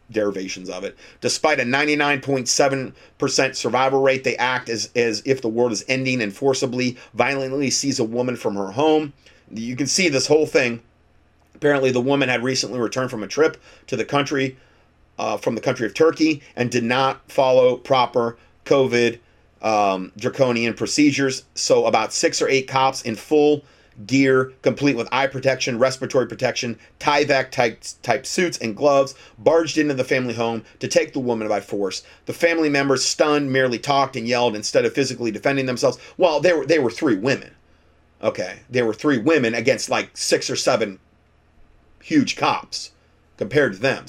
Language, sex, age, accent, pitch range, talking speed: English, male, 40-59, American, 115-140 Hz, 170 wpm